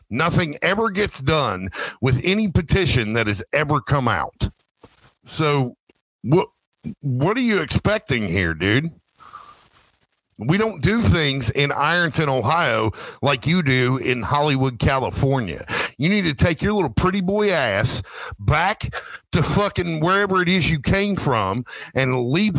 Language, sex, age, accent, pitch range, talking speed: English, male, 50-69, American, 130-185 Hz, 140 wpm